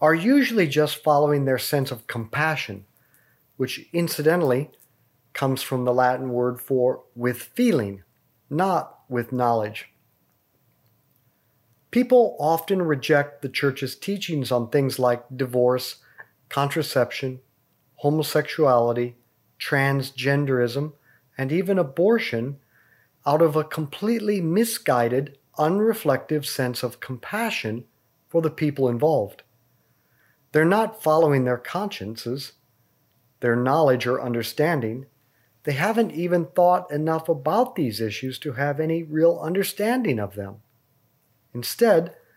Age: 40-59